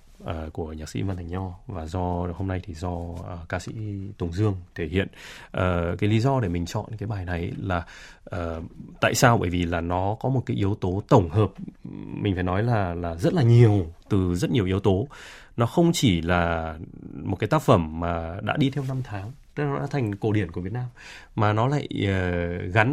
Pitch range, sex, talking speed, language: 90-120 Hz, male, 225 wpm, Vietnamese